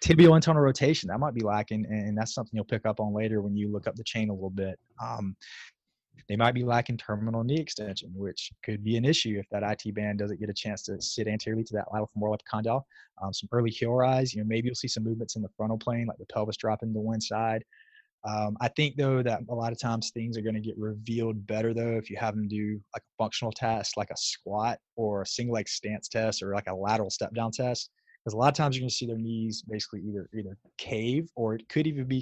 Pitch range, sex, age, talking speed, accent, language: 105-120 Hz, male, 20-39, 255 wpm, American, English